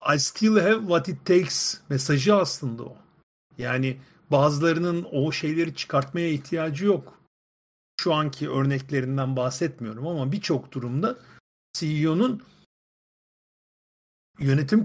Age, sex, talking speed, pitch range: 50-69, male, 100 wpm, 135-170 Hz